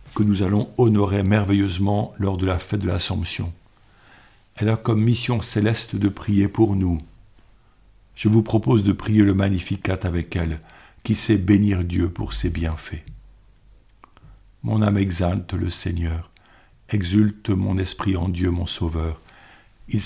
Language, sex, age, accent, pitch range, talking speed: French, male, 50-69, French, 85-105 Hz, 145 wpm